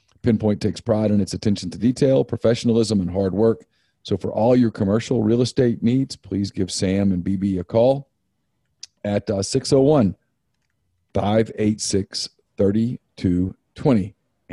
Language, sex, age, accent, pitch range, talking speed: English, male, 40-59, American, 100-115 Hz, 120 wpm